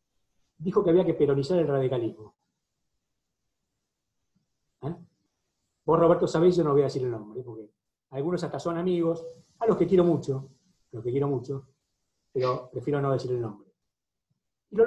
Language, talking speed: Spanish, 170 wpm